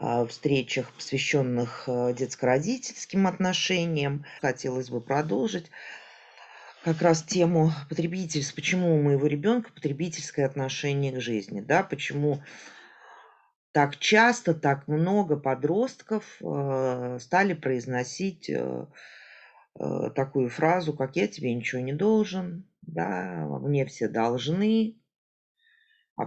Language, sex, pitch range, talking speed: Russian, female, 125-170 Hz, 95 wpm